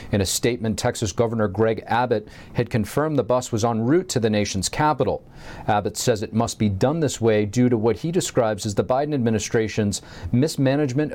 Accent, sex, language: American, male, English